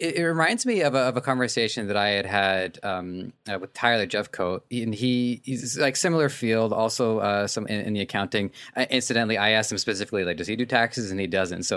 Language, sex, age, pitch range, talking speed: English, male, 20-39, 100-125 Hz, 230 wpm